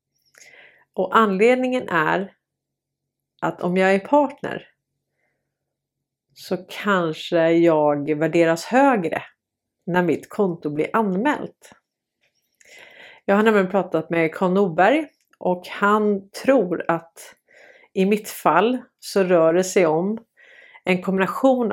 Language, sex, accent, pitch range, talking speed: Swedish, female, native, 165-245 Hz, 105 wpm